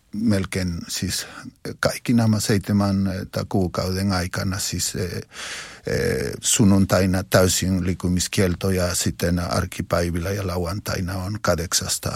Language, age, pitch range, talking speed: Finnish, 50-69, 95-105 Hz, 100 wpm